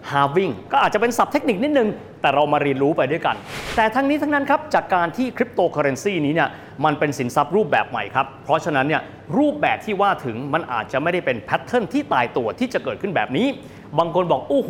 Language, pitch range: Thai, 150-240 Hz